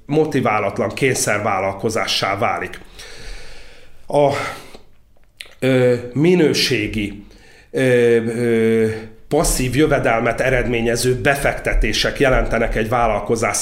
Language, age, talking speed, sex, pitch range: Hungarian, 40-59, 55 wpm, male, 120-140 Hz